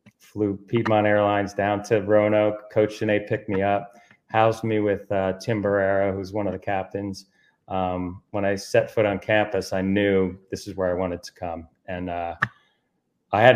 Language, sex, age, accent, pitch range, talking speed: English, male, 30-49, American, 90-100 Hz, 185 wpm